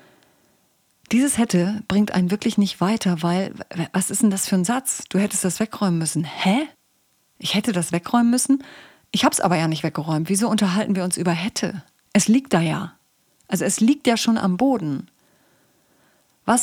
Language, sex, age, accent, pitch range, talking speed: German, female, 30-49, German, 180-230 Hz, 185 wpm